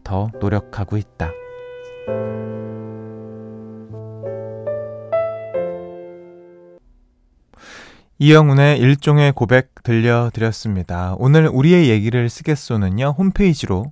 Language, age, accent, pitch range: Korean, 20-39, native, 105-145 Hz